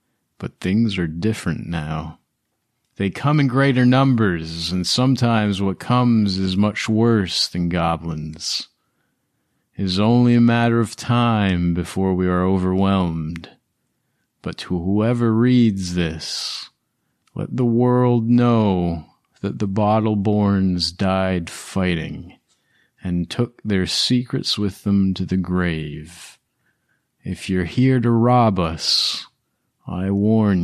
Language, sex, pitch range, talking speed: English, male, 85-110 Hz, 120 wpm